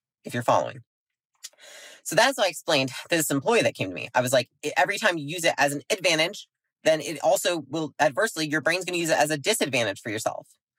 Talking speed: 230 wpm